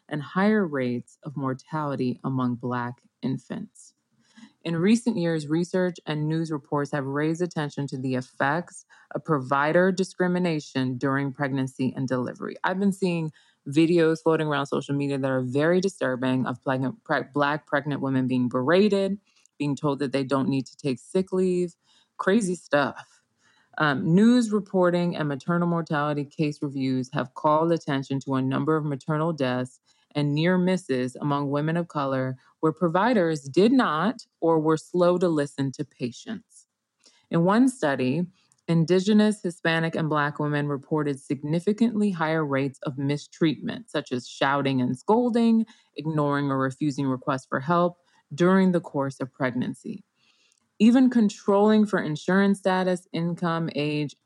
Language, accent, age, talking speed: English, American, 20-39, 145 wpm